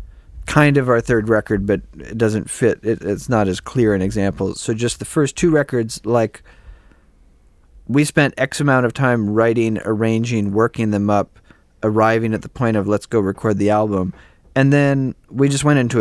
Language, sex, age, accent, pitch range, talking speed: English, male, 30-49, American, 95-115 Hz, 185 wpm